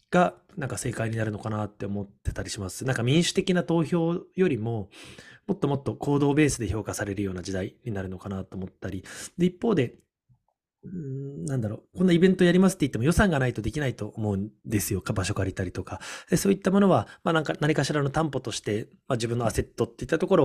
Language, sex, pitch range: Japanese, male, 105-155 Hz